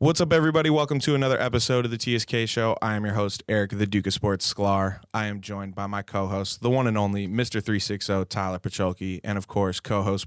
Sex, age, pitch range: male, 20-39, 95-110 Hz